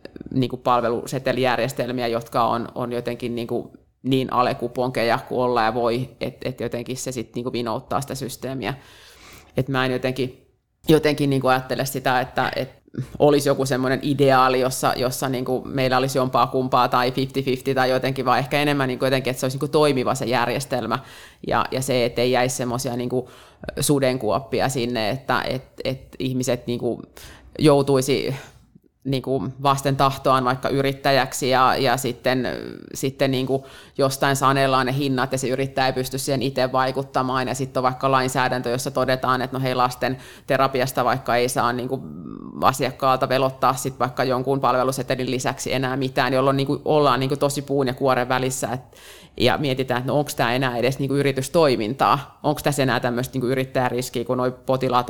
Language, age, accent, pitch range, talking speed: Finnish, 20-39, native, 125-135 Hz, 165 wpm